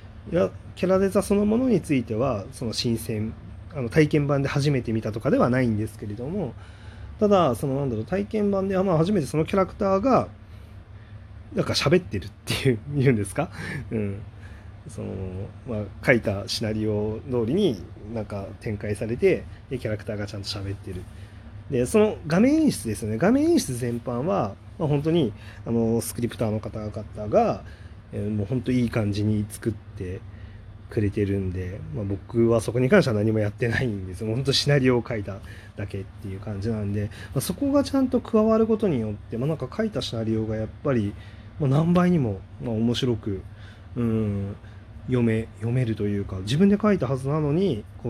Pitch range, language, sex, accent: 105-130 Hz, Japanese, male, native